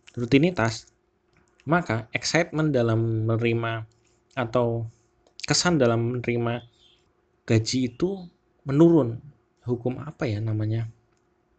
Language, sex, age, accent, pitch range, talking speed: Indonesian, male, 20-39, native, 115-140 Hz, 85 wpm